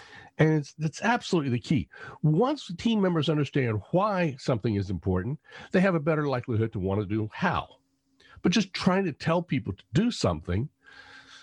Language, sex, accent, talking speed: English, male, American, 180 wpm